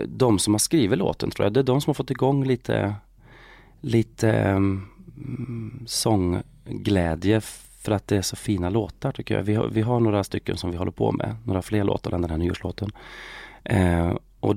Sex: male